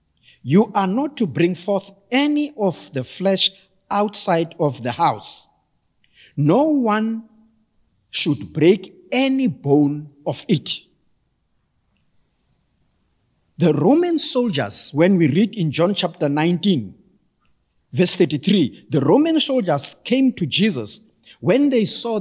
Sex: male